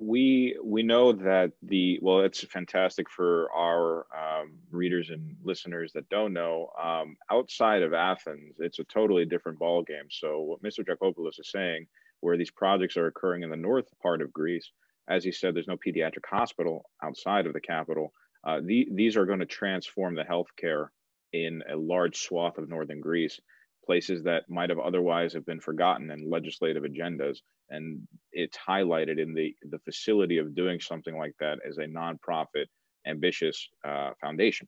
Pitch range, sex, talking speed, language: 80-95 Hz, male, 175 wpm, English